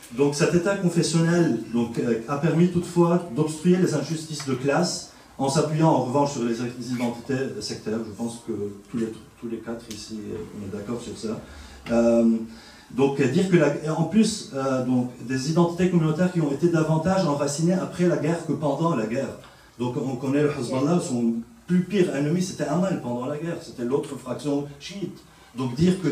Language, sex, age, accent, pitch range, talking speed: French, male, 40-59, French, 120-155 Hz, 185 wpm